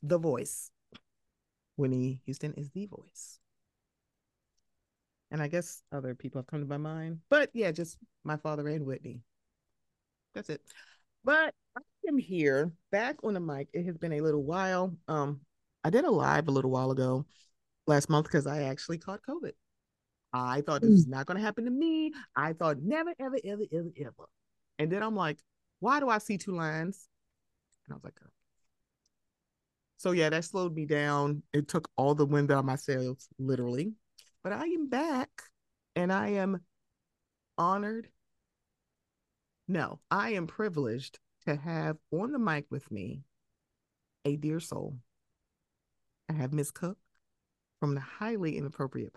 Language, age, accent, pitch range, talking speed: English, 30-49, American, 145-200 Hz, 160 wpm